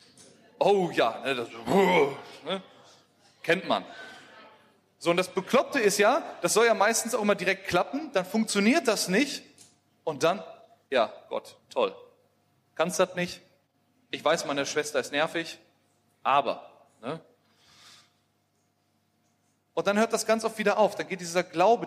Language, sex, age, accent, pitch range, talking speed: German, male, 30-49, German, 160-205 Hz, 145 wpm